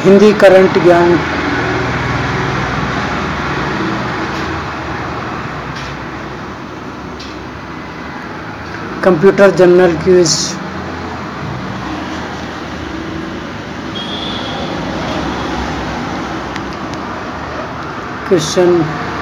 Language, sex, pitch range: Hindi, male, 165-200 Hz